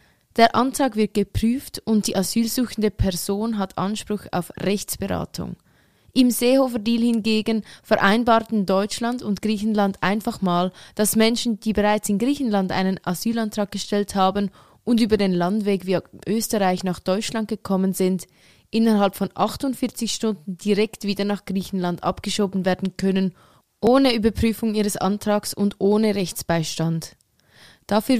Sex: female